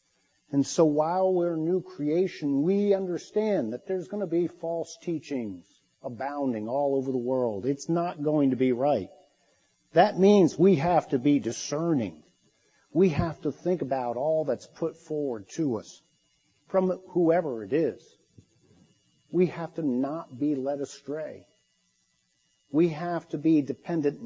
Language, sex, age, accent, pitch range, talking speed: English, male, 50-69, American, 120-175 Hz, 150 wpm